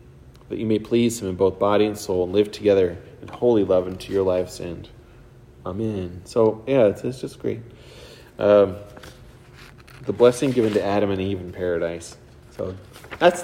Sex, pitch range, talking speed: male, 95-125 Hz, 175 wpm